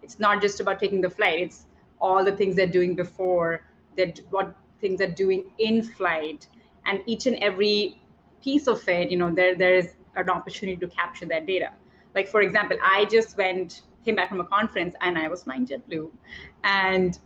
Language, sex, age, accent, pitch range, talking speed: Polish, female, 20-39, Indian, 175-205 Hz, 200 wpm